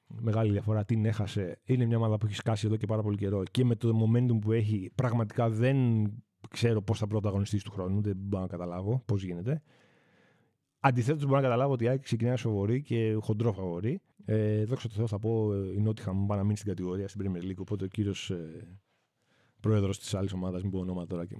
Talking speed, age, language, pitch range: 210 wpm, 30-49, Greek, 105-135 Hz